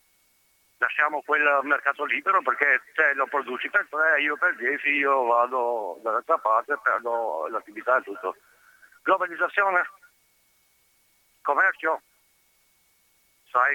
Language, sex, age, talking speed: Italian, male, 60-79, 110 wpm